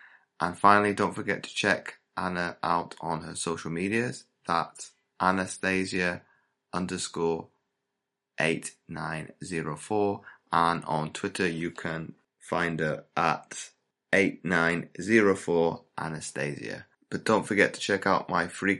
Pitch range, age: 80-95 Hz, 20-39